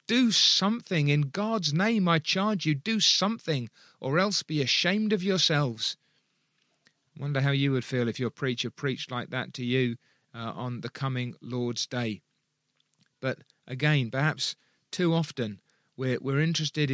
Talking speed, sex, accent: 155 wpm, male, British